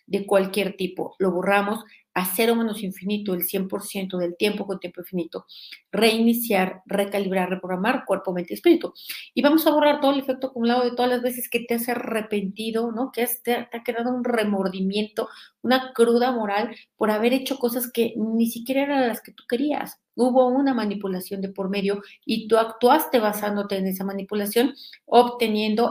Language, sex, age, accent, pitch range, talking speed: Spanish, female, 40-59, Mexican, 195-235 Hz, 180 wpm